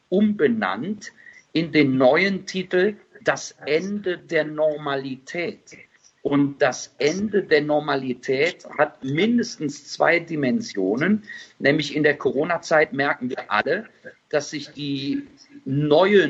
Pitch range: 140-165 Hz